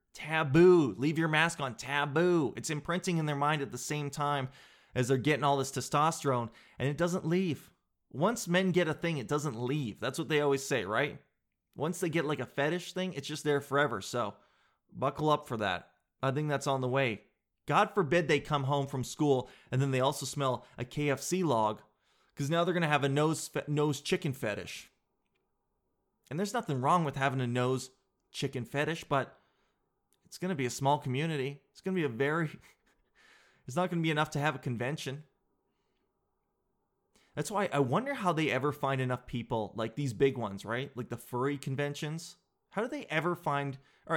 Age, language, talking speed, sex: 20-39, English, 195 wpm, male